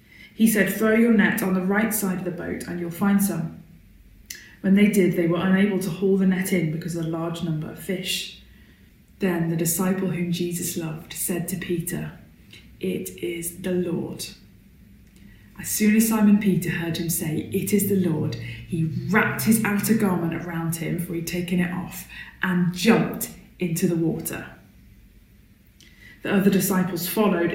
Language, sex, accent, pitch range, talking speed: English, female, British, 170-200 Hz, 175 wpm